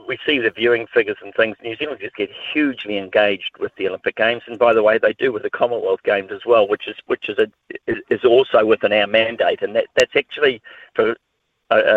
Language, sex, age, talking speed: English, male, 50-69, 220 wpm